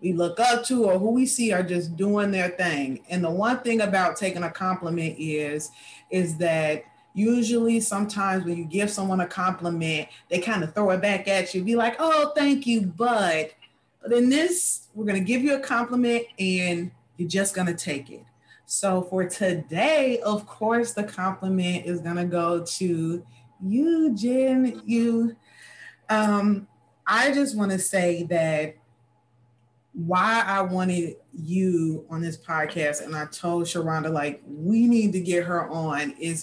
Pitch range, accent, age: 165-215 Hz, American, 30-49